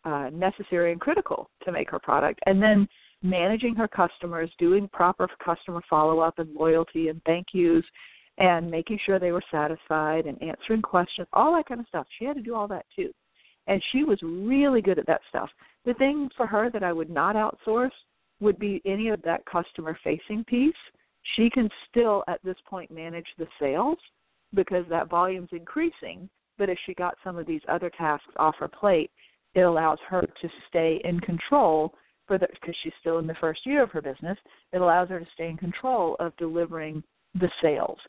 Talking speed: 190 wpm